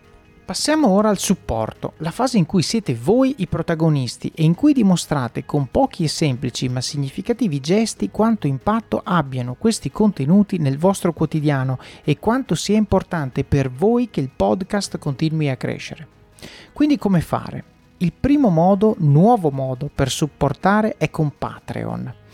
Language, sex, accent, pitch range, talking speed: Italian, male, native, 145-225 Hz, 150 wpm